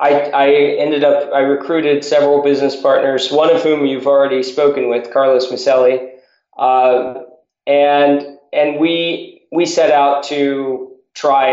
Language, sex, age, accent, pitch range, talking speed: English, male, 20-39, American, 130-150 Hz, 140 wpm